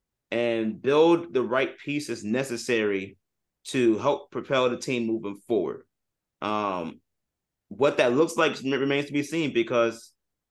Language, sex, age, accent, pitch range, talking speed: English, male, 30-49, American, 115-140 Hz, 130 wpm